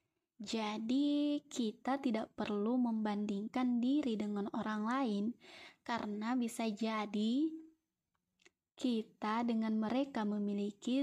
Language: Indonesian